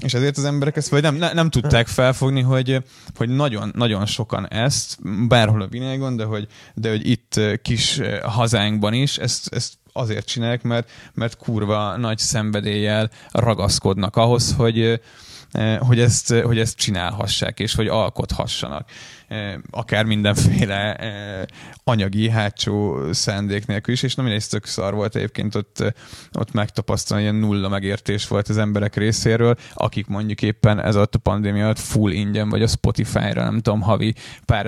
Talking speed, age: 150 wpm, 20-39